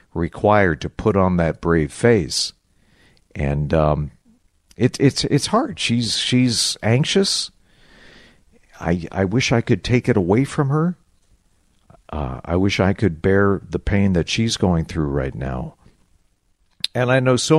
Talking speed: 150 wpm